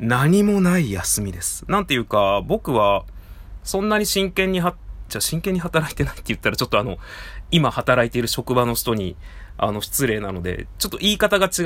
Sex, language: male, Japanese